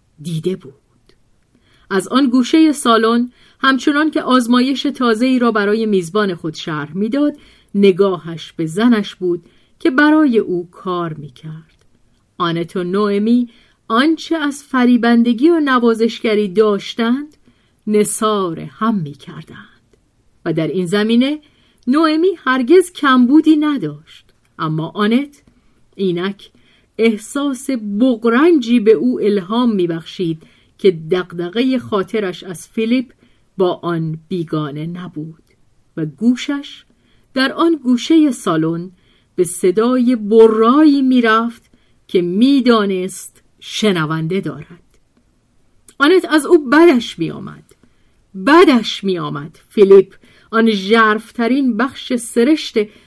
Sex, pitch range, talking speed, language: female, 175-255 Hz, 105 wpm, Persian